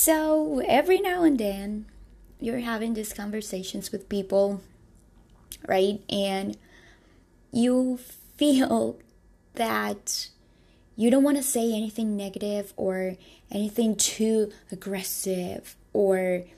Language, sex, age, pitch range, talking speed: English, female, 10-29, 195-240 Hz, 100 wpm